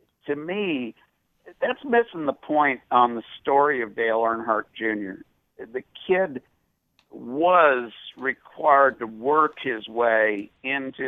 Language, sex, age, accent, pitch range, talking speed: English, male, 60-79, American, 125-175 Hz, 120 wpm